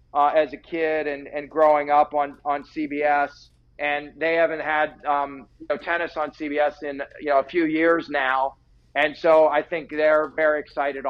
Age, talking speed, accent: 50-69, 190 wpm, American